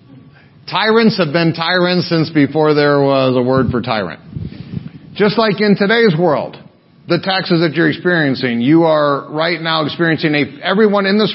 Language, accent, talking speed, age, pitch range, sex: English, American, 160 wpm, 40-59, 140-190 Hz, male